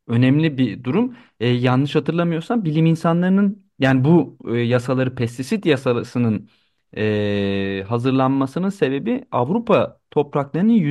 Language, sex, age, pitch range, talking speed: Turkish, male, 40-59, 115-155 Hz, 105 wpm